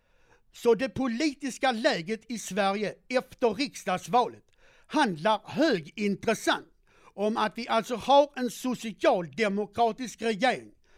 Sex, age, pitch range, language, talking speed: male, 60-79, 195-255 Hz, Swedish, 100 wpm